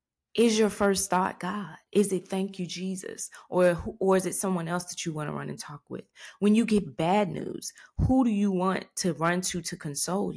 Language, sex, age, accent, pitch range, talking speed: English, female, 20-39, American, 165-205 Hz, 220 wpm